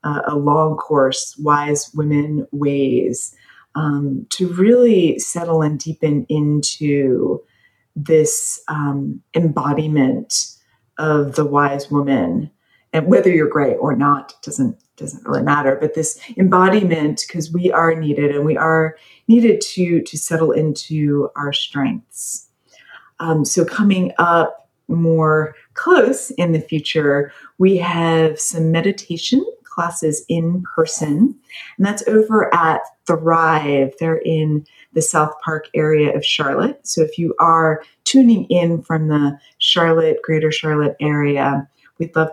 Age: 30-49